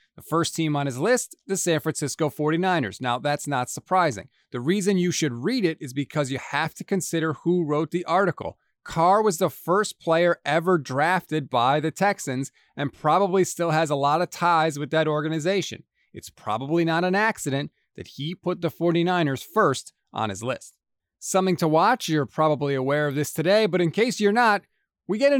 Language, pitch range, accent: English, 140-185 Hz, American